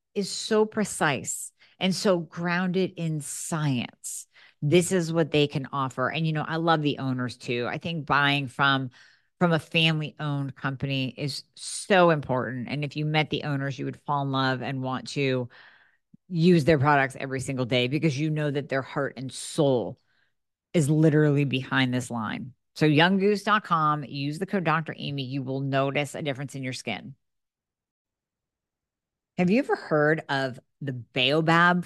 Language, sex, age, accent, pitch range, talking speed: English, female, 40-59, American, 135-165 Hz, 165 wpm